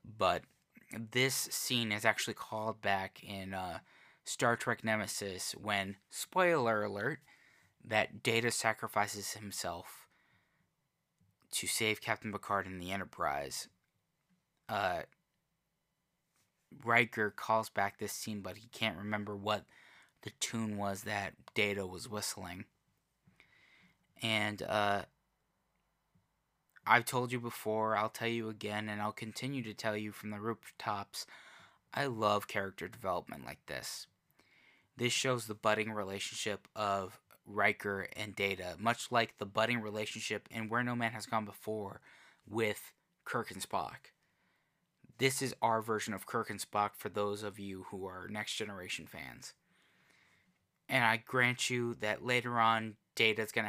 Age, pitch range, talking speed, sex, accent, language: 20-39, 100-115 Hz, 135 wpm, male, American, English